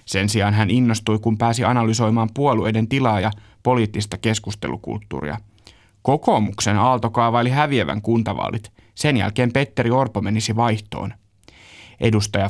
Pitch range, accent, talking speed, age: 105-125 Hz, native, 110 wpm, 30-49